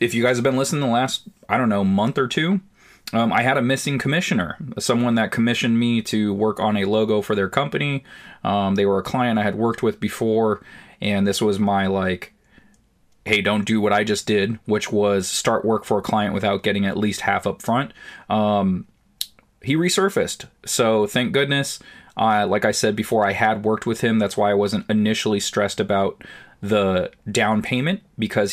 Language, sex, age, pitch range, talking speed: English, male, 20-39, 100-115 Hz, 200 wpm